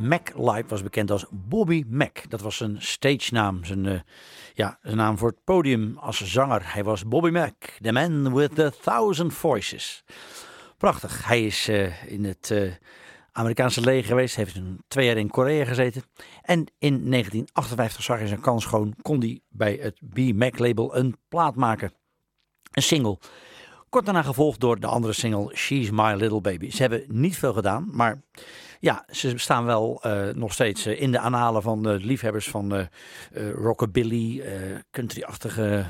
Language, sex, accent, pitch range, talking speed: English, male, Dutch, 105-135 Hz, 180 wpm